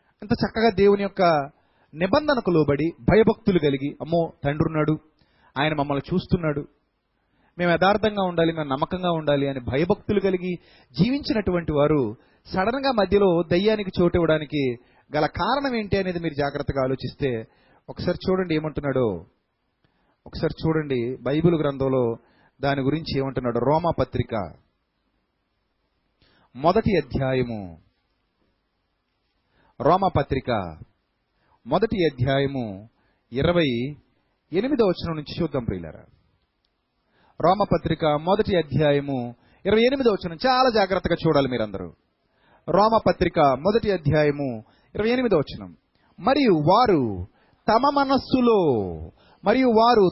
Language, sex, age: Telugu, male, 30-49